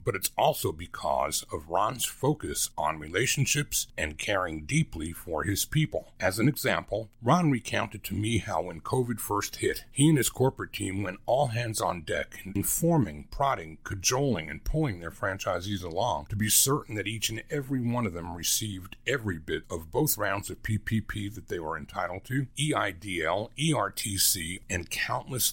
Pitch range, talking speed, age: 95-130 Hz, 170 wpm, 50-69